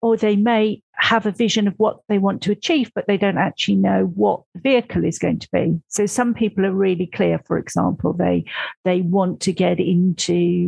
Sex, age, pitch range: female, 50-69, 175-230 Hz